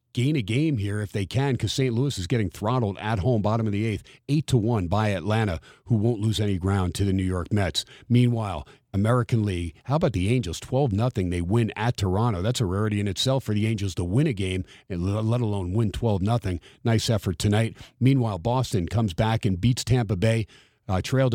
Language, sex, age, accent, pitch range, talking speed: English, male, 50-69, American, 100-125 Hz, 210 wpm